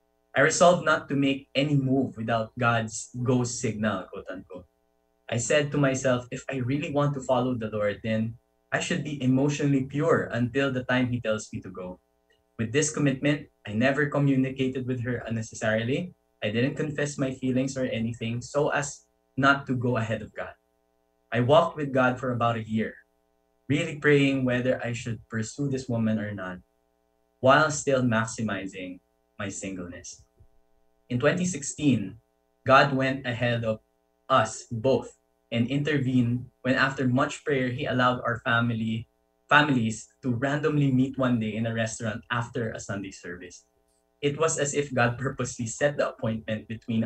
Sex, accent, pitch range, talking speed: male, Filipino, 105-135 Hz, 160 wpm